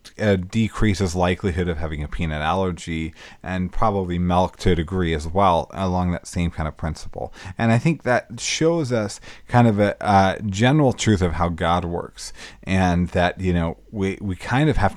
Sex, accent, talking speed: male, American, 190 wpm